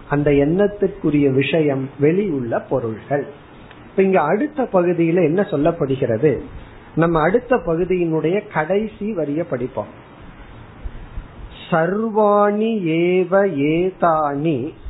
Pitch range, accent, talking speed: 150-205 Hz, native, 65 wpm